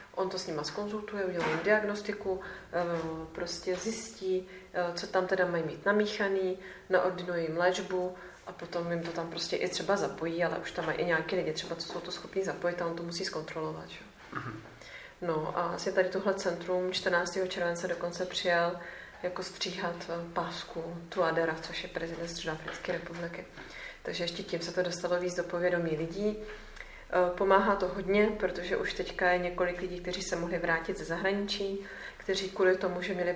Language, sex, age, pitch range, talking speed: Czech, female, 30-49, 170-185 Hz, 175 wpm